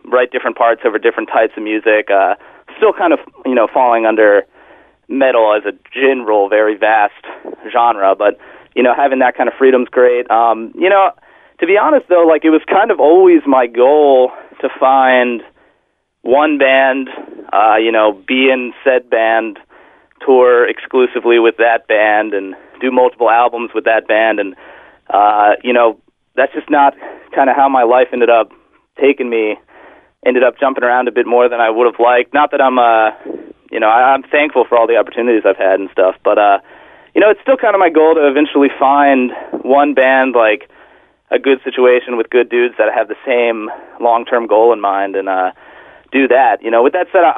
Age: 30-49